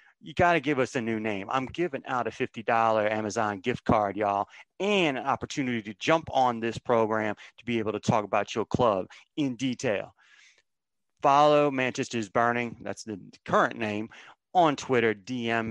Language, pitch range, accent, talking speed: English, 115-145 Hz, American, 170 wpm